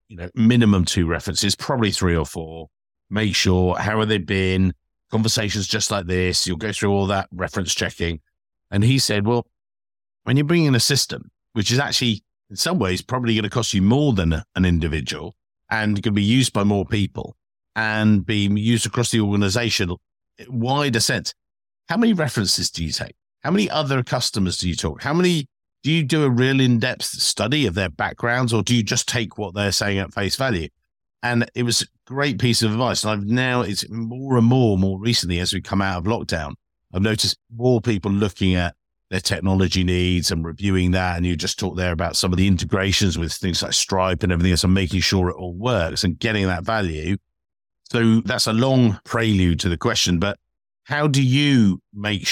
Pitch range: 90-120 Hz